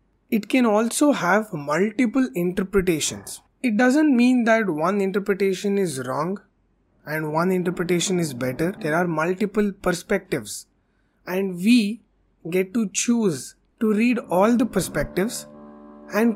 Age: 20-39